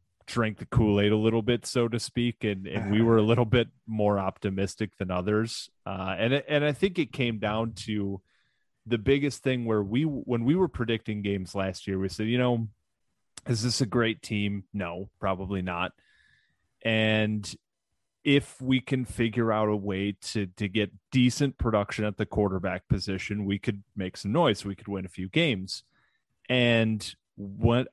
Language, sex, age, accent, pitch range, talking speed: English, male, 30-49, American, 95-120 Hz, 180 wpm